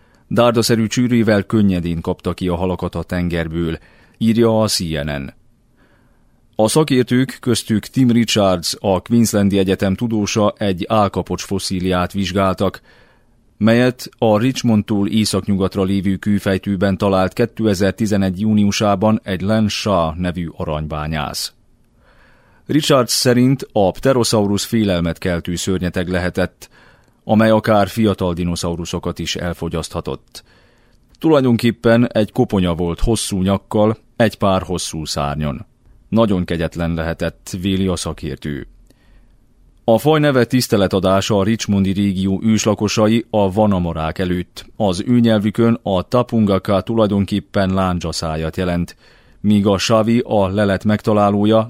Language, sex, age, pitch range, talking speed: Hungarian, male, 30-49, 90-110 Hz, 105 wpm